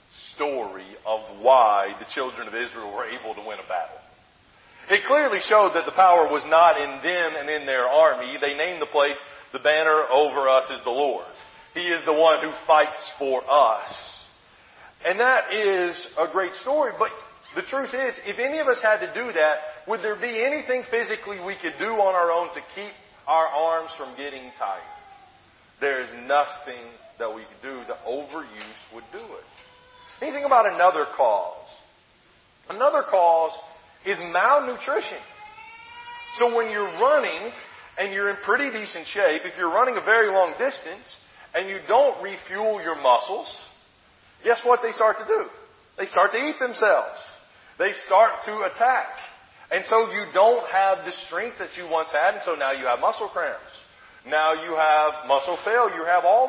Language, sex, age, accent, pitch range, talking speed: English, male, 40-59, American, 160-255 Hz, 180 wpm